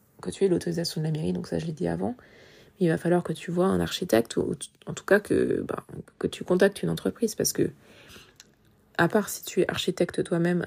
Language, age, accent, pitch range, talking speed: French, 20-39, French, 165-190 Hz, 235 wpm